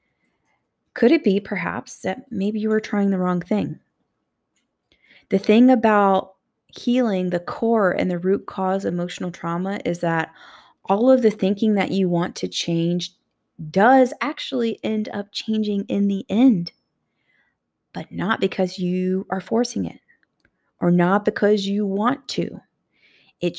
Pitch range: 185-230 Hz